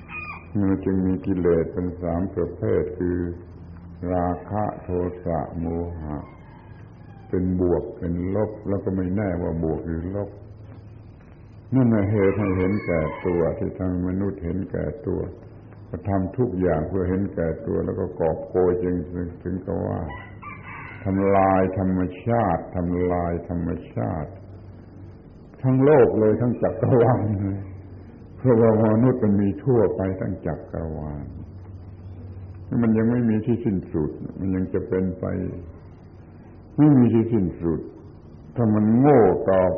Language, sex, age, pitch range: Thai, male, 70-89, 90-110 Hz